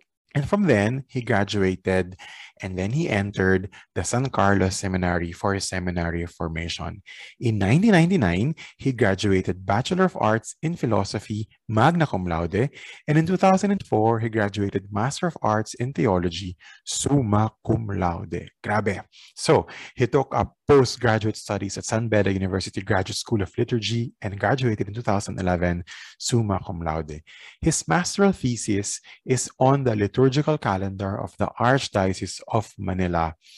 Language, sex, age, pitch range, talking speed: Filipino, male, 20-39, 95-125 Hz, 140 wpm